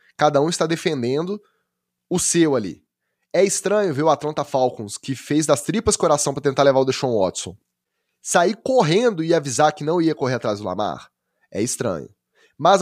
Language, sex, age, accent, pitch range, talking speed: Portuguese, male, 10-29, Brazilian, 125-175 Hz, 180 wpm